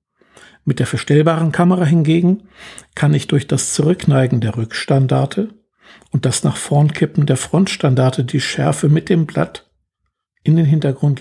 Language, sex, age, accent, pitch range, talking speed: German, male, 60-79, German, 130-165 Hz, 135 wpm